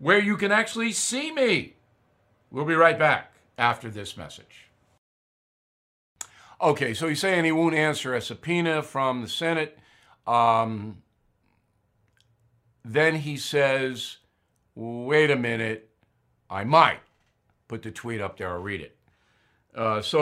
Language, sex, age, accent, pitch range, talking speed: English, male, 50-69, American, 110-150 Hz, 130 wpm